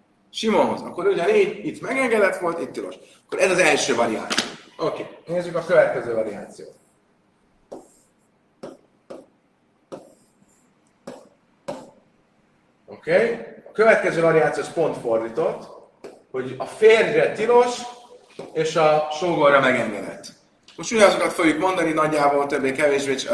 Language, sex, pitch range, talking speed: Hungarian, male, 130-185 Hz, 110 wpm